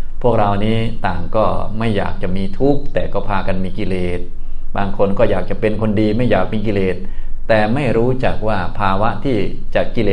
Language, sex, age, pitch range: Thai, male, 20-39, 90-115 Hz